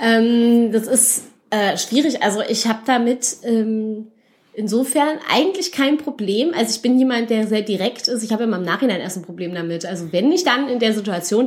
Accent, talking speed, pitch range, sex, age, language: German, 200 wpm, 190-235 Hz, female, 20-39, German